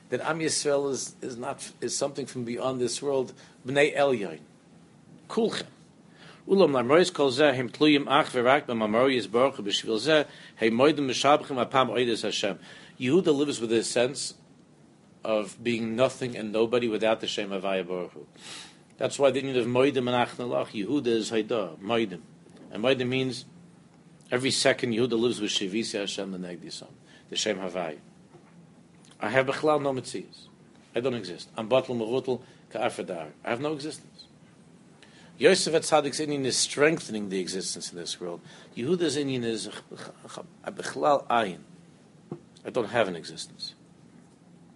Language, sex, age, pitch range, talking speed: English, male, 50-69, 115-145 Hz, 145 wpm